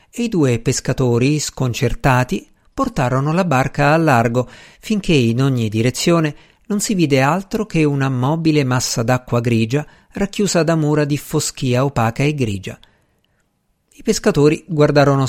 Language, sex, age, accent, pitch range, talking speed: Italian, male, 50-69, native, 115-160 Hz, 135 wpm